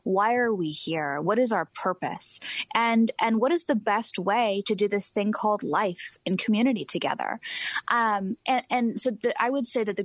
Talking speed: 205 wpm